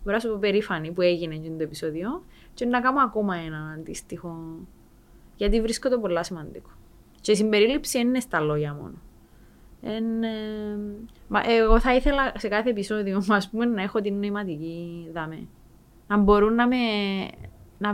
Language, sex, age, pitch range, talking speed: Greek, female, 20-39, 170-225 Hz, 155 wpm